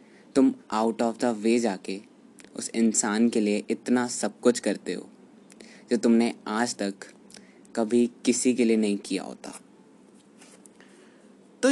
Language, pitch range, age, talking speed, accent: Hindi, 110-150 Hz, 20-39, 140 wpm, native